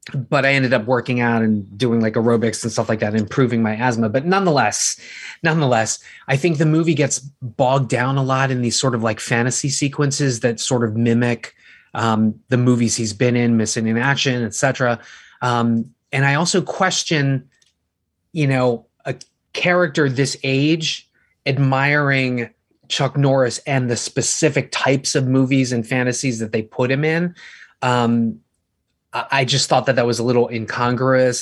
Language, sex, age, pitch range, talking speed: English, male, 20-39, 120-145 Hz, 170 wpm